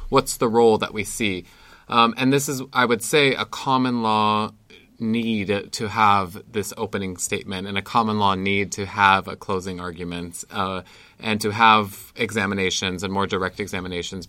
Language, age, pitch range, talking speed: English, 20-39, 100-120 Hz, 170 wpm